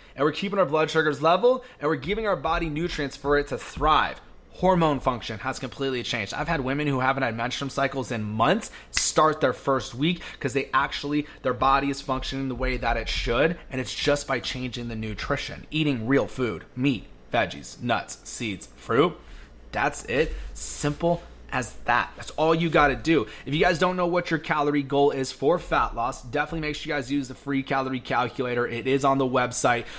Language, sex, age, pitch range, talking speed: English, male, 30-49, 130-160 Hz, 205 wpm